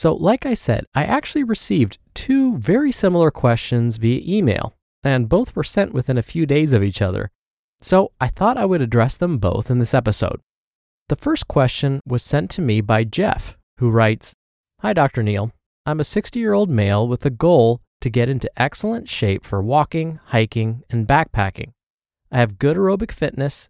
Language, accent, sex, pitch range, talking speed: English, American, male, 115-160 Hz, 185 wpm